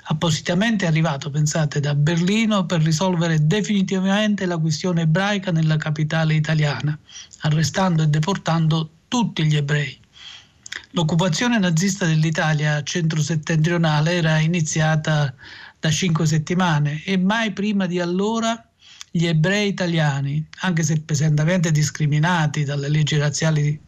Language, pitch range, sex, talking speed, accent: Italian, 155-185 Hz, male, 110 wpm, native